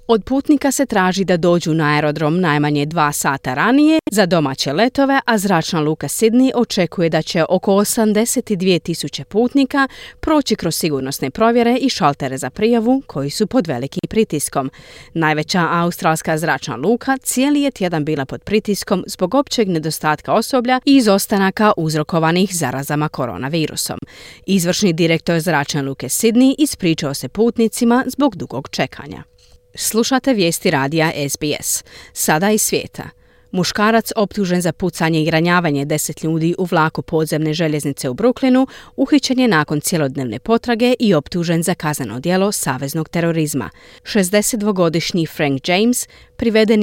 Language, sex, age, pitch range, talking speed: Croatian, female, 30-49, 155-230 Hz, 135 wpm